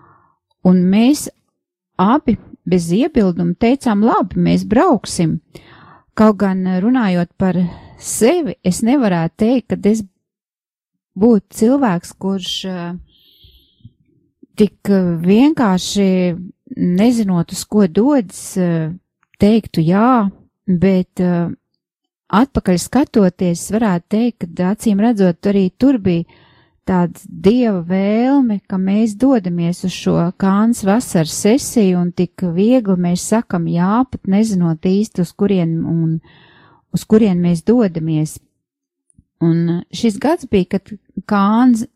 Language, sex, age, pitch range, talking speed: English, female, 30-49, 175-225 Hz, 105 wpm